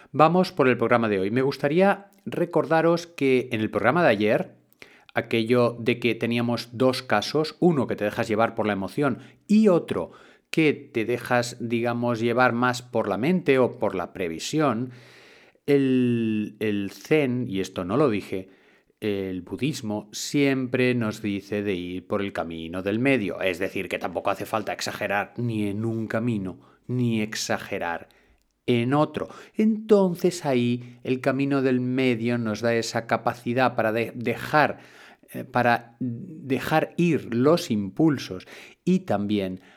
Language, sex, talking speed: Spanish, male, 145 wpm